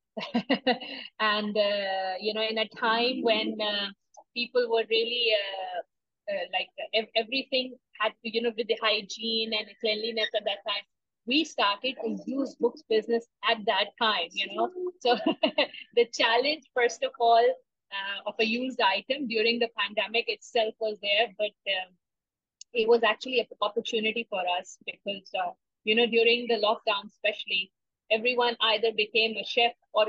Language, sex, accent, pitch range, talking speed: English, female, Indian, 210-245 Hz, 160 wpm